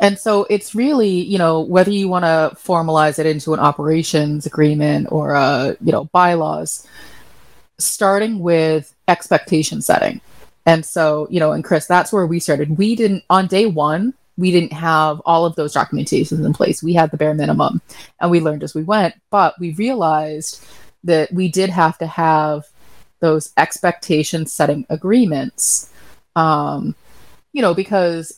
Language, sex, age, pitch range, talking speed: English, female, 30-49, 155-190 Hz, 165 wpm